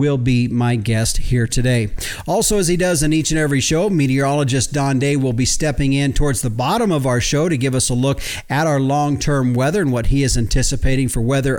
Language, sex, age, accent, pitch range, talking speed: English, male, 50-69, American, 125-155 Hz, 230 wpm